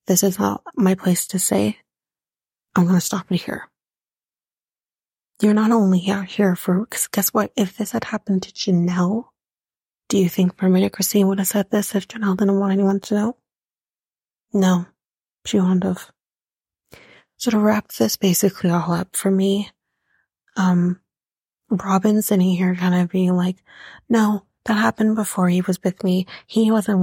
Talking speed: 165 wpm